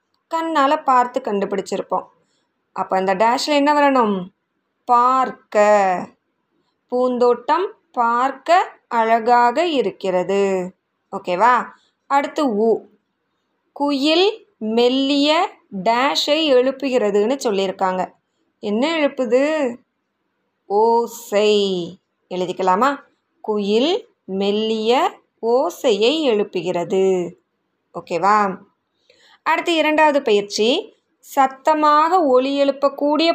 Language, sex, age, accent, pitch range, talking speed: Tamil, female, 20-39, native, 210-300 Hz, 65 wpm